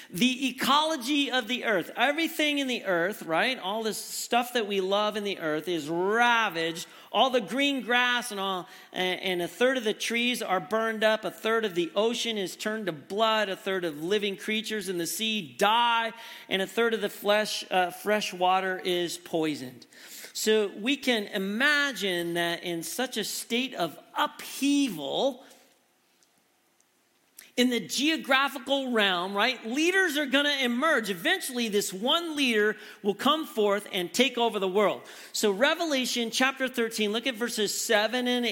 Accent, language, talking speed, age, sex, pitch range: American, English, 165 wpm, 40-59, male, 185-245 Hz